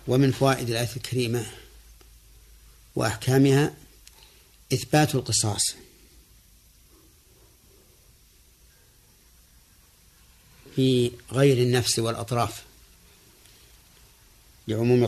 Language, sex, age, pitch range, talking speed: Arabic, male, 50-69, 100-125 Hz, 50 wpm